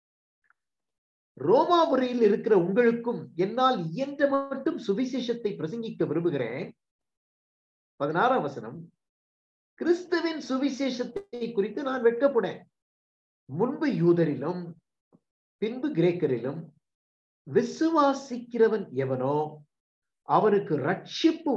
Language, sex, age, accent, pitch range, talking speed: Tamil, male, 50-69, native, 175-280 Hz, 45 wpm